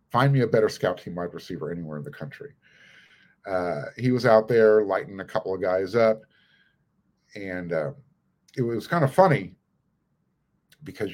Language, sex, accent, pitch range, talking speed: English, male, American, 95-140 Hz, 165 wpm